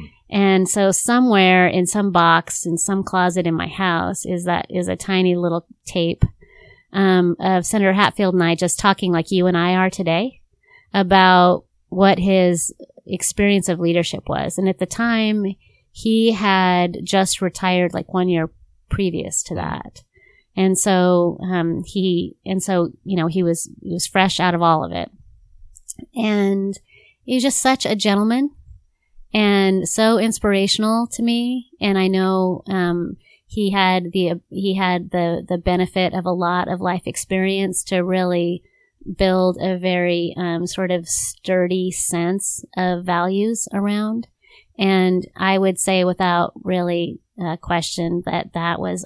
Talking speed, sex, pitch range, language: 155 wpm, female, 175-195 Hz, English